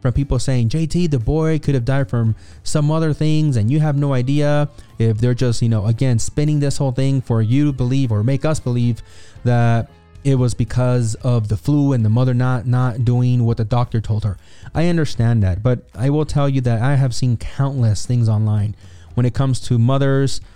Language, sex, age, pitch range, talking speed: English, male, 20-39, 115-135 Hz, 215 wpm